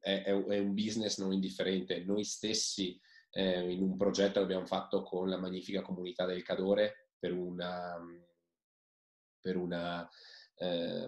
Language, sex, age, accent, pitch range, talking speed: Italian, male, 20-39, native, 90-100 Hz, 135 wpm